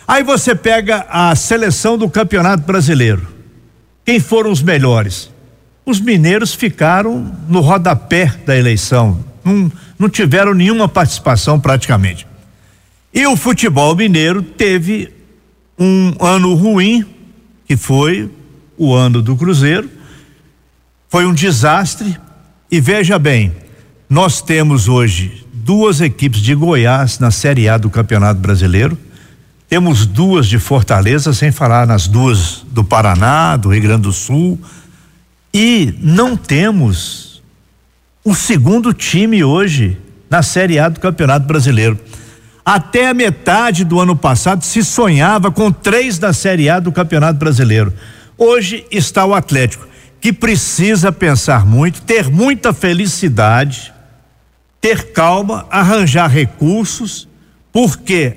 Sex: male